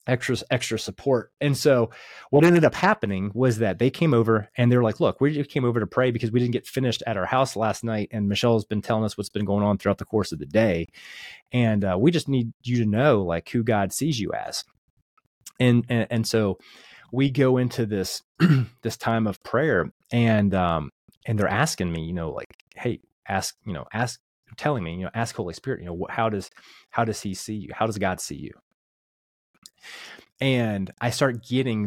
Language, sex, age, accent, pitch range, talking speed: English, male, 30-49, American, 100-125 Hz, 215 wpm